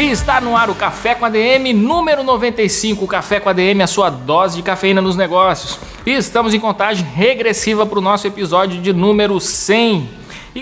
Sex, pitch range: male, 180-215 Hz